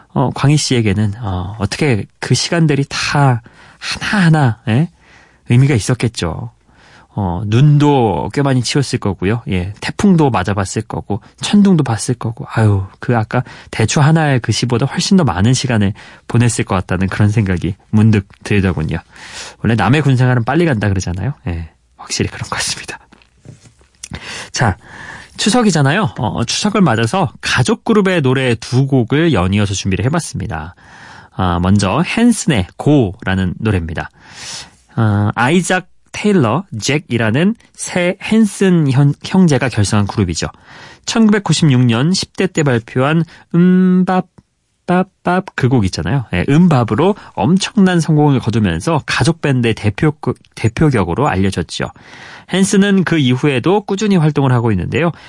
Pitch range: 105-160 Hz